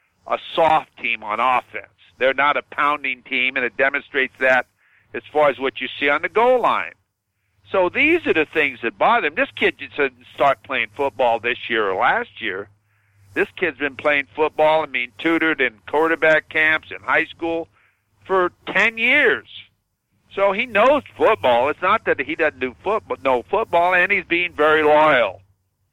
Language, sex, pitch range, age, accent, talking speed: English, male, 120-175 Hz, 50-69, American, 180 wpm